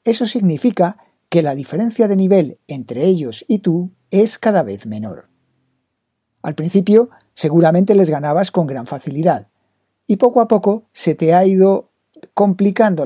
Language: Spanish